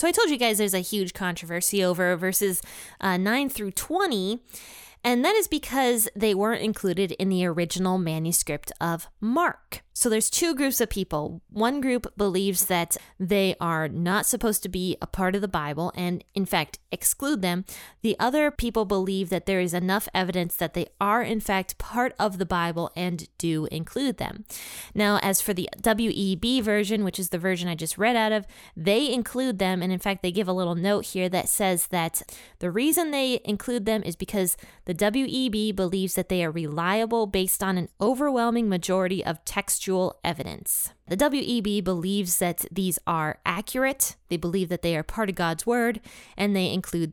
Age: 20-39